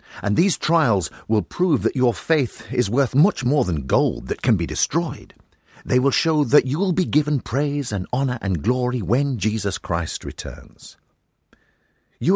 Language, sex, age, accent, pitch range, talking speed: English, male, 50-69, British, 95-135 Hz, 175 wpm